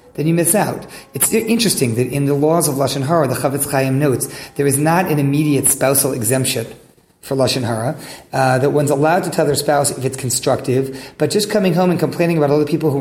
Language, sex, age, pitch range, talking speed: English, male, 40-59, 130-160 Hz, 225 wpm